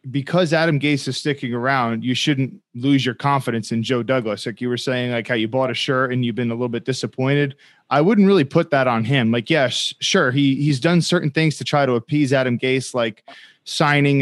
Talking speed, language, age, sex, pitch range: 235 wpm, English, 20-39, male, 125-160 Hz